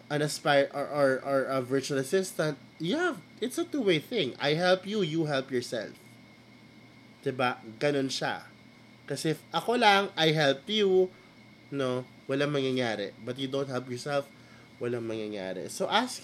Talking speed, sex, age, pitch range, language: 150 wpm, male, 20-39, 125-175 Hz, Filipino